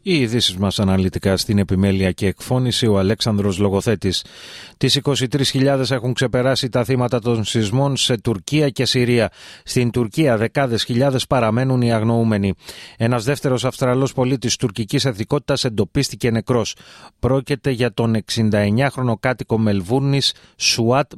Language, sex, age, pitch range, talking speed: Greek, male, 30-49, 110-130 Hz, 130 wpm